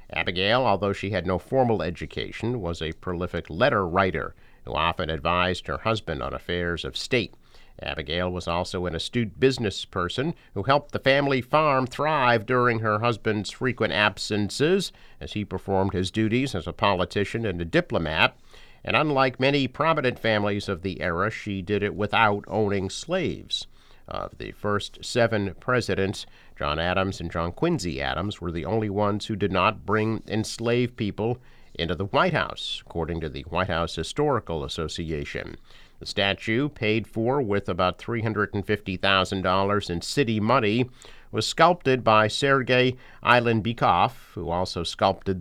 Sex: male